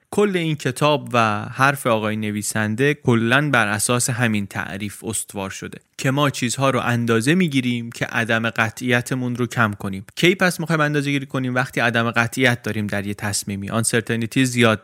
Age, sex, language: 20-39, male, Persian